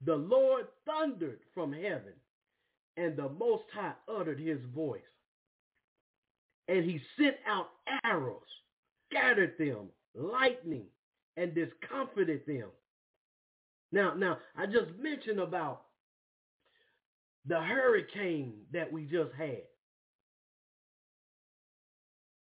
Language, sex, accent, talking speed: English, male, American, 95 wpm